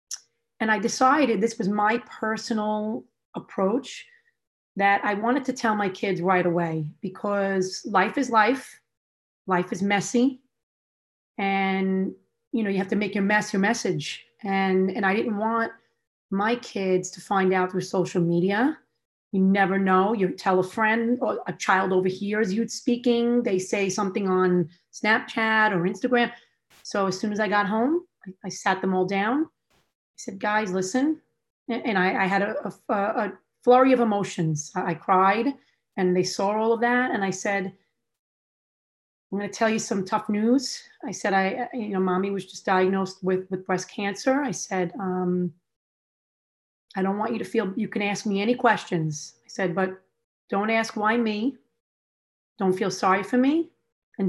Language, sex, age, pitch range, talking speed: English, female, 30-49, 185-225 Hz, 175 wpm